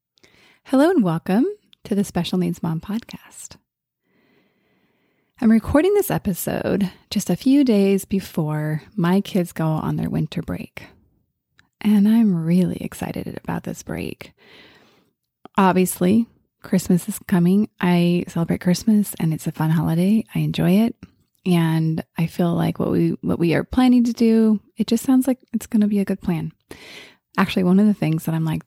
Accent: American